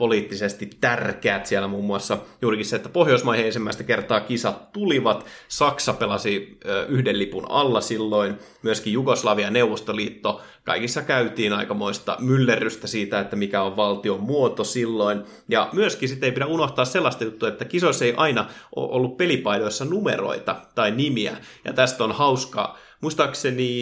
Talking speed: 140 wpm